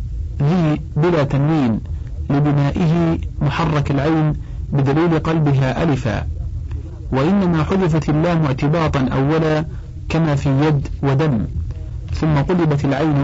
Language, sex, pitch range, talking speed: Arabic, male, 130-160 Hz, 95 wpm